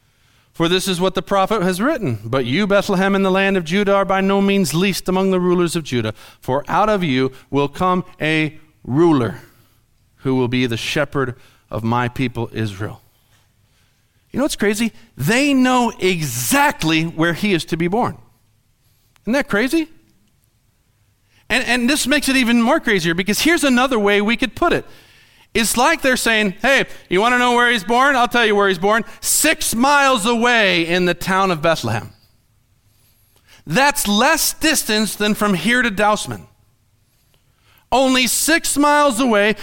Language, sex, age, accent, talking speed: English, male, 40-59, American, 170 wpm